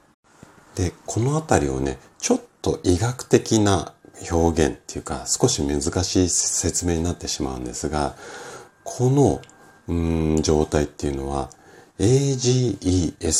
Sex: male